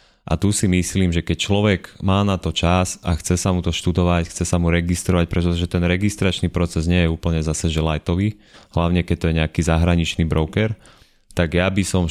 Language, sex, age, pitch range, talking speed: Slovak, male, 30-49, 80-90 Hz, 210 wpm